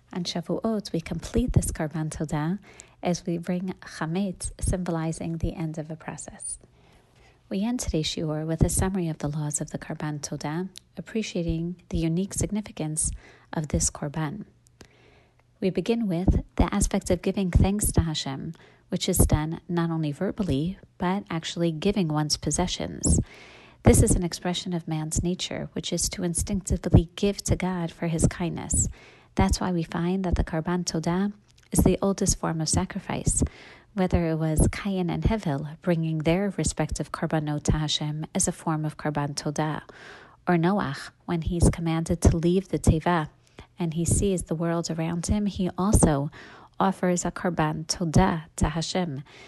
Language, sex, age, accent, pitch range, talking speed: English, female, 30-49, American, 155-185 Hz, 160 wpm